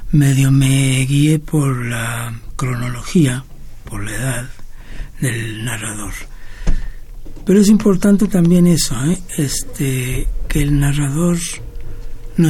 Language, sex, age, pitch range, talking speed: Spanish, male, 60-79, 125-160 Hz, 105 wpm